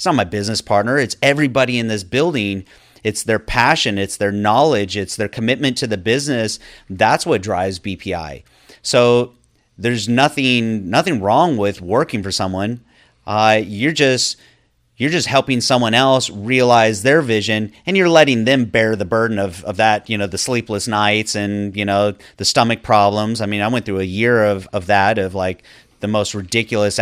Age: 30-49